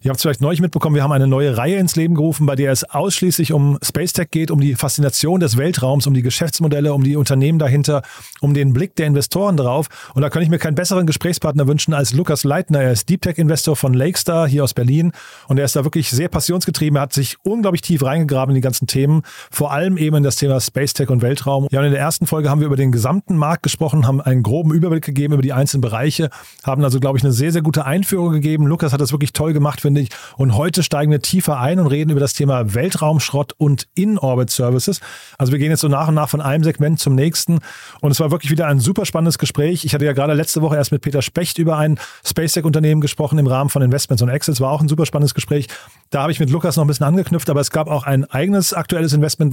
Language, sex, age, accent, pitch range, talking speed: German, male, 40-59, German, 140-160 Hz, 245 wpm